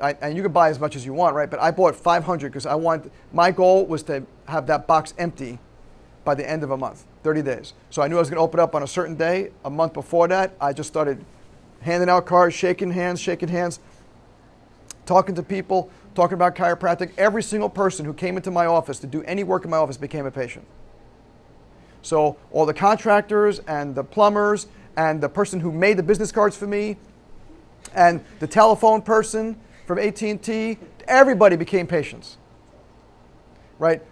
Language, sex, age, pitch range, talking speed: English, male, 40-59, 150-190 Hz, 195 wpm